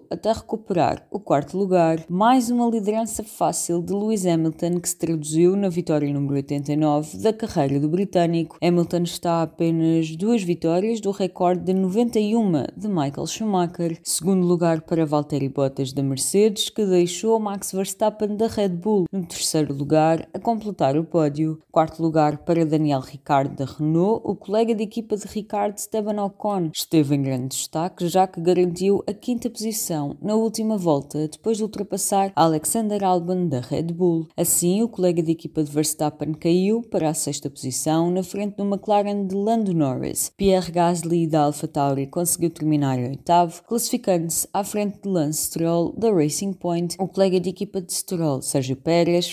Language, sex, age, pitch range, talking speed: Portuguese, female, 20-39, 155-200 Hz, 165 wpm